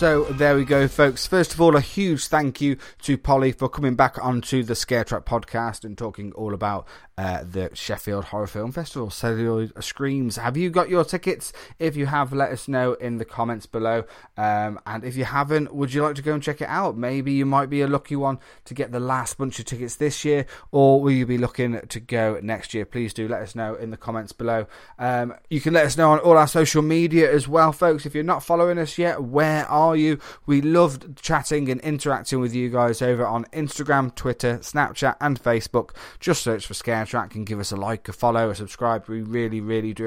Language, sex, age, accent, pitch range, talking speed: English, male, 20-39, British, 115-150 Hz, 230 wpm